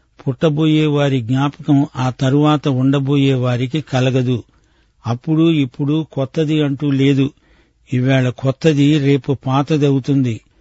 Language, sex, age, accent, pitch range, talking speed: Telugu, male, 50-69, native, 130-150 Hz, 95 wpm